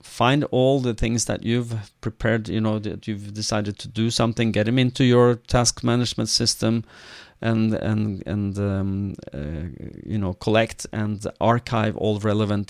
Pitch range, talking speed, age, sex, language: 100-115 Hz, 160 wpm, 40-59, male, English